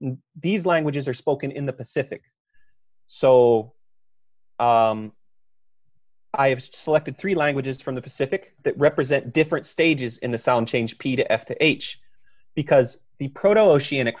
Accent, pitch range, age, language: American, 125-160 Hz, 30-49, English